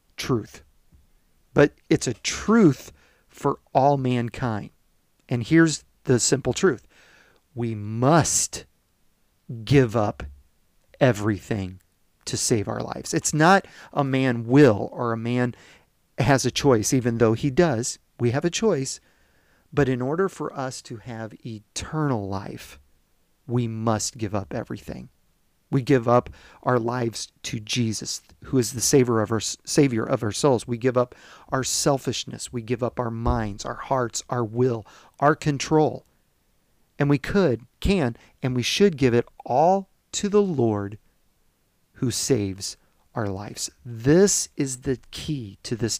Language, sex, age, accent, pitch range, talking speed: English, male, 40-59, American, 110-140 Hz, 145 wpm